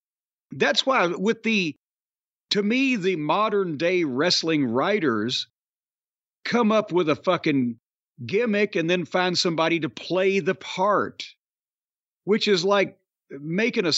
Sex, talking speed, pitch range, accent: male, 130 wpm, 160-210 Hz, American